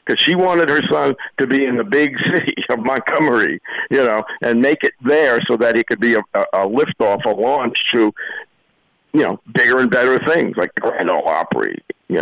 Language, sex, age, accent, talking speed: English, male, 60-79, American, 205 wpm